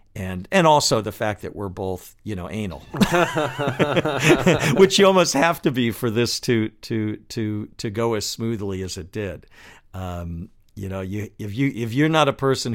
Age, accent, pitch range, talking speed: 50-69, American, 100-130 Hz, 190 wpm